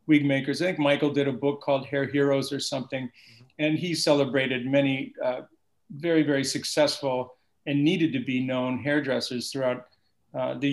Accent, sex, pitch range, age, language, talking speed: American, male, 130-150 Hz, 40-59, English, 160 wpm